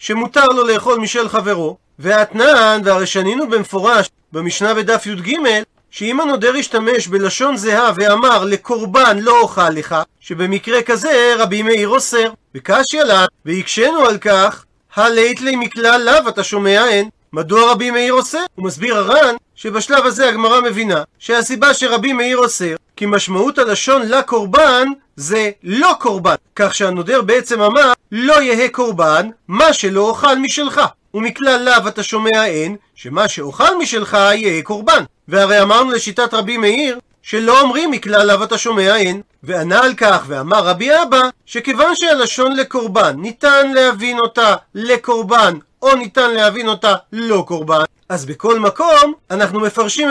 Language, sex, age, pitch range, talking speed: Hebrew, male, 40-59, 200-255 Hz, 140 wpm